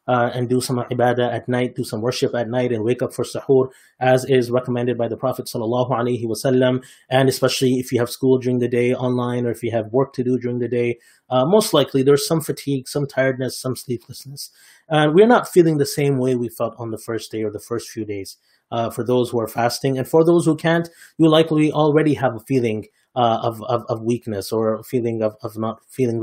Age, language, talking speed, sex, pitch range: 20-39, English, 235 wpm, male, 120-150 Hz